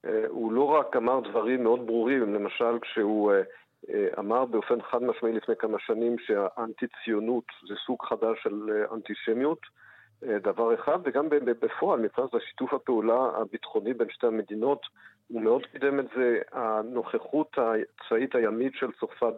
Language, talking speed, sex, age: Hebrew, 135 wpm, male, 50-69